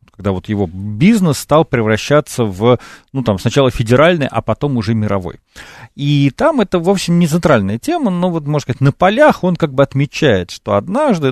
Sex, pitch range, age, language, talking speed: male, 115-160 Hz, 40-59, Russian, 185 wpm